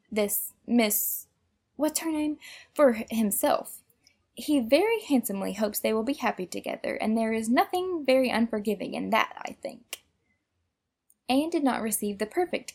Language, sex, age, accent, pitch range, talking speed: English, female, 10-29, American, 210-290 Hz, 140 wpm